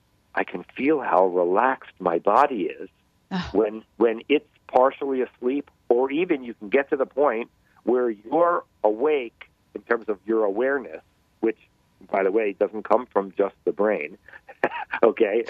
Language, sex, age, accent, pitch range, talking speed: English, male, 50-69, American, 110-165 Hz, 155 wpm